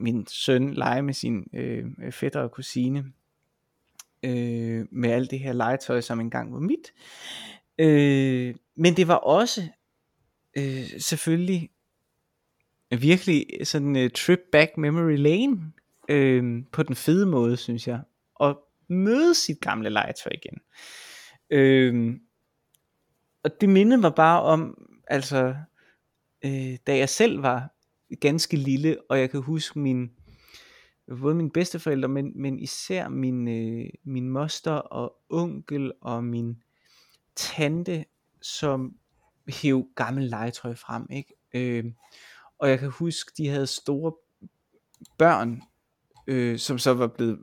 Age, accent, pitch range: 20-39, native, 120-160 Hz